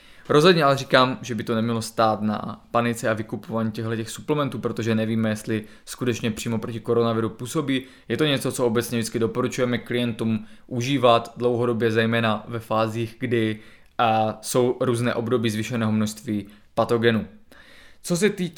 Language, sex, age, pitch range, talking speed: Czech, male, 20-39, 115-140 Hz, 150 wpm